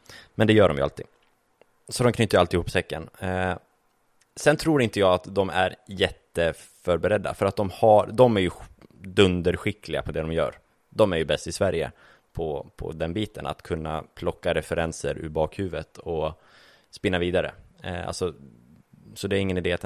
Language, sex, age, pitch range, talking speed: Swedish, male, 20-39, 80-95 Hz, 185 wpm